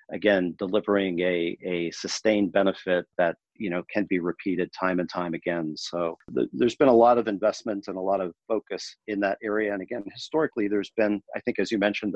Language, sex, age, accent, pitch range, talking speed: English, male, 40-59, American, 85-105 Hz, 205 wpm